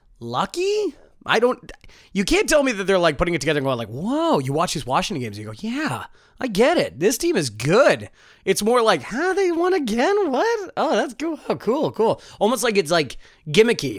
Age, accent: 20-39, American